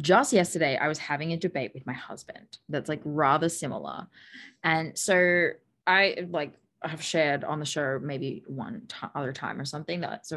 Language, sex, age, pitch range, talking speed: English, female, 20-39, 145-180 Hz, 185 wpm